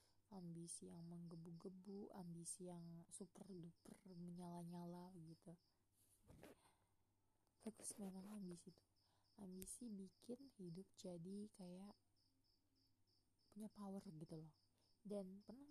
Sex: female